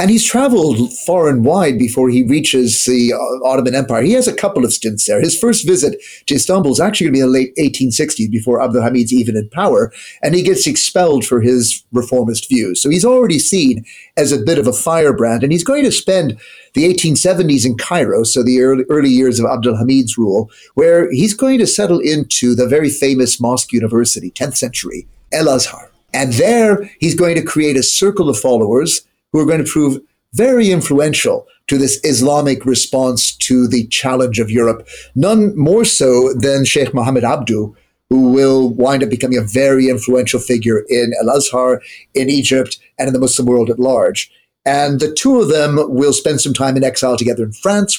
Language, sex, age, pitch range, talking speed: English, male, 40-59, 125-155 Hz, 195 wpm